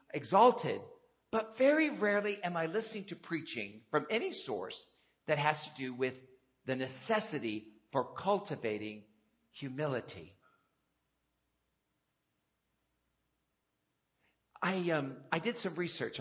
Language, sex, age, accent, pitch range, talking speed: English, male, 50-69, American, 125-190 Hz, 105 wpm